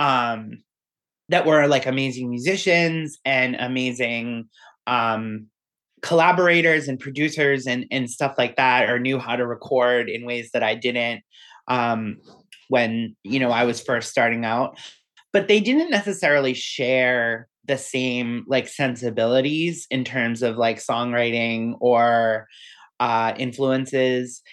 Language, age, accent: English, 30-49, American